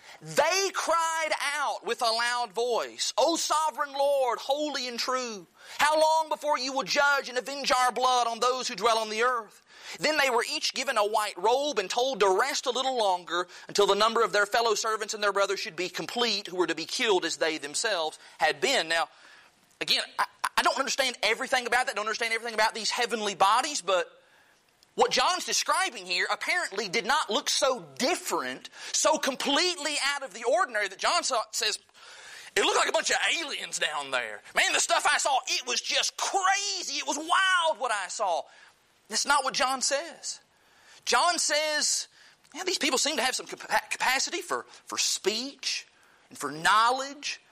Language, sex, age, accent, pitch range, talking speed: English, male, 30-49, American, 220-300 Hz, 190 wpm